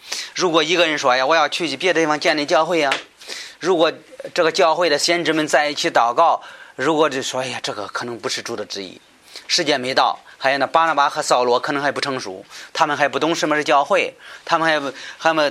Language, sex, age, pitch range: Chinese, male, 30-49, 130-160 Hz